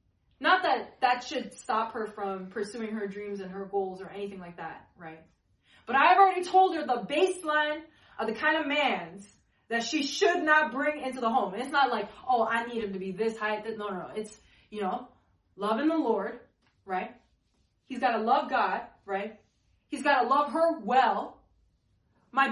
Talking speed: 190 wpm